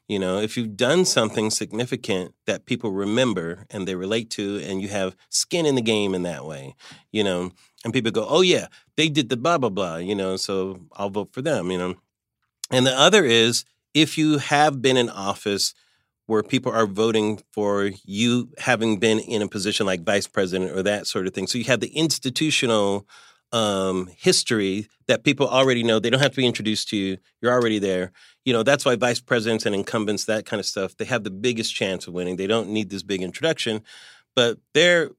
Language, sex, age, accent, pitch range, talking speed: English, male, 40-59, American, 100-130 Hz, 210 wpm